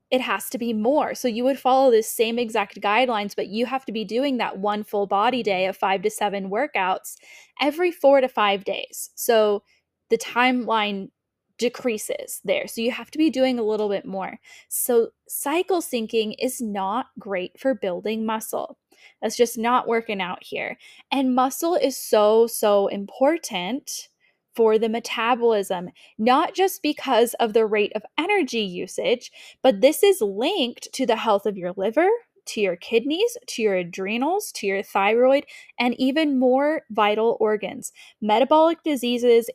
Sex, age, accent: female, 10-29, American